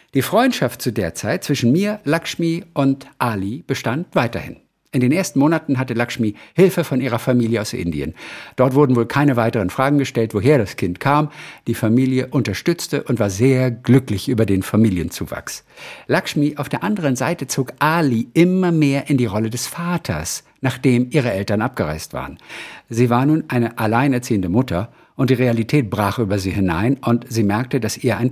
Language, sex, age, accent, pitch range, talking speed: German, male, 50-69, German, 110-145 Hz, 175 wpm